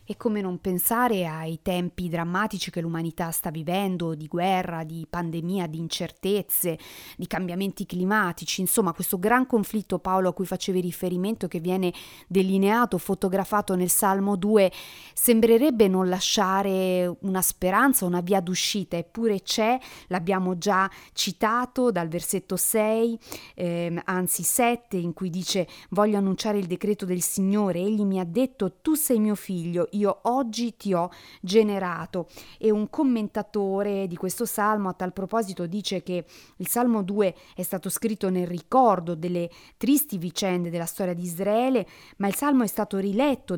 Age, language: 40-59, Italian